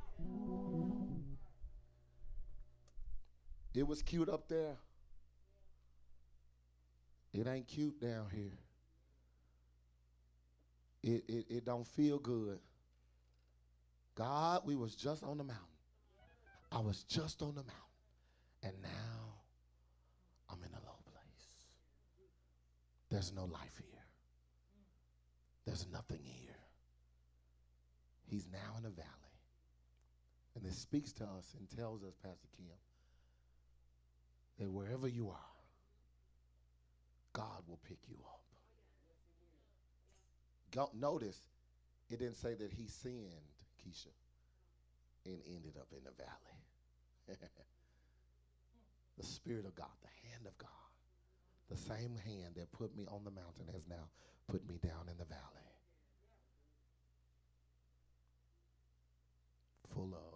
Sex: male